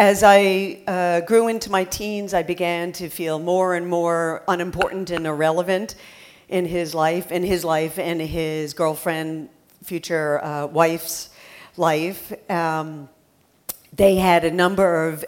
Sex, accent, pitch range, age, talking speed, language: female, American, 155-185 Hz, 50-69, 140 wpm, English